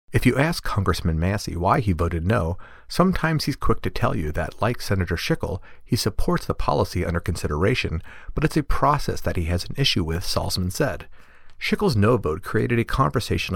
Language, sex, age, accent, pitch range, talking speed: English, male, 40-59, American, 90-130 Hz, 190 wpm